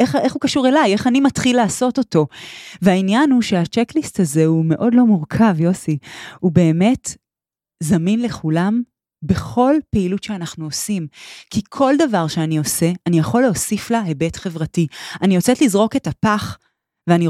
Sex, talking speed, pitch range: female, 155 wpm, 170-235 Hz